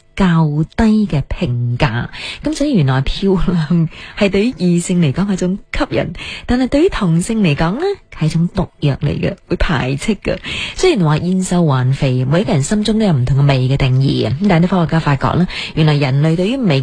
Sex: female